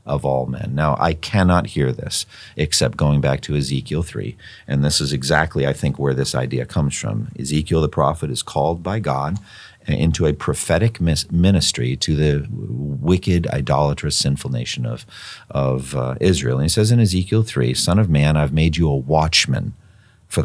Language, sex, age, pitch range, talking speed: English, male, 50-69, 75-110 Hz, 180 wpm